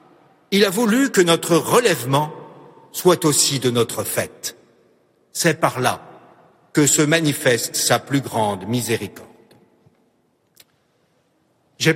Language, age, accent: French, 60-79, French